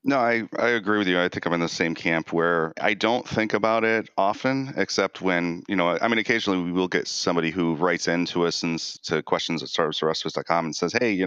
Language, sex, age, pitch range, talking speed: English, male, 30-49, 85-95 Hz, 240 wpm